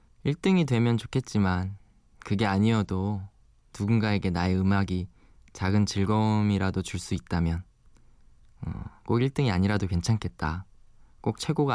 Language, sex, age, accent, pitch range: Korean, male, 20-39, native, 95-115 Hz